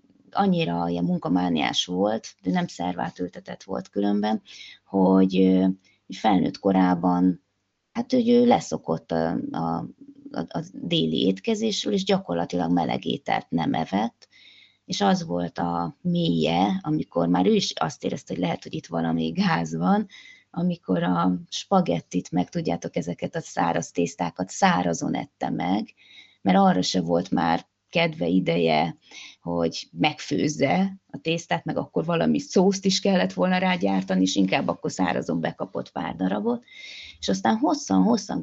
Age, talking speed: 20-39, 135 wpm